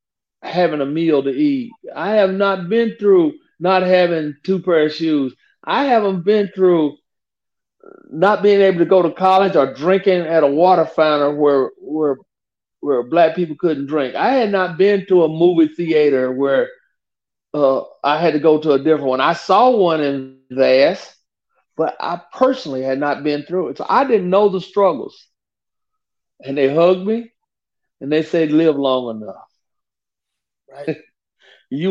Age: 50-69